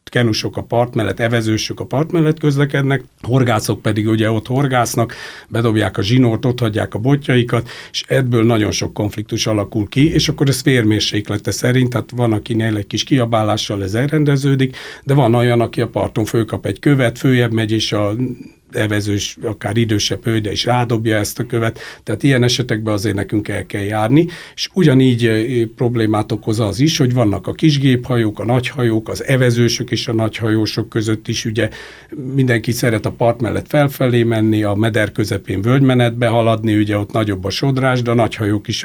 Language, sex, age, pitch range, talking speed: Hungarian, male, 60-79, 110-130 Hz, 175 wpm